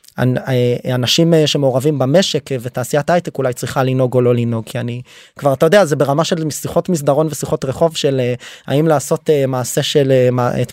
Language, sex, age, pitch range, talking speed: Hebrew, male, 20-39, 130-165 Hz, 160 wpm